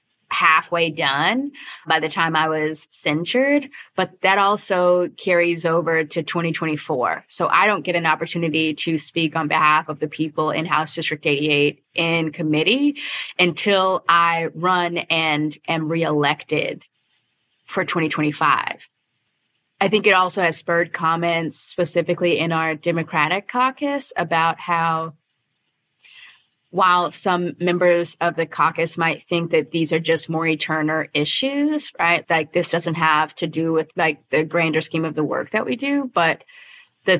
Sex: female